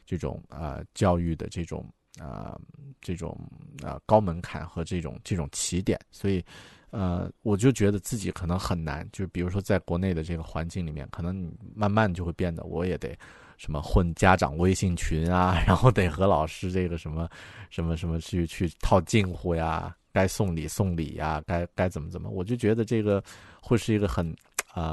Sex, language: male, Chinese